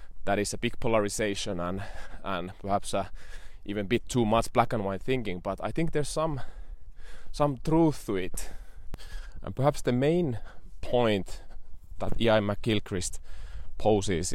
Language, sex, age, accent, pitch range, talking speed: Finnish, male, 20-39, native, 90-115 Hz, 150 wpm